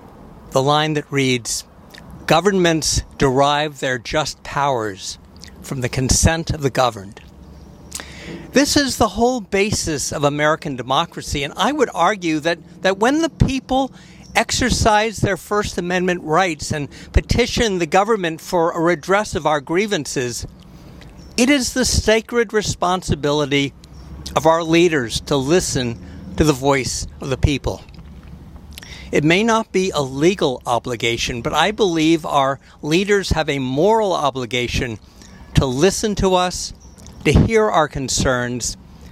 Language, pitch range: English, 130-195 Hz